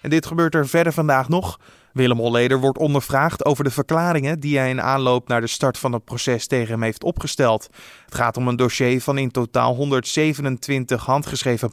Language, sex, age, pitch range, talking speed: Dutch, male, 20-39, 125-165 Hz, 195 wpm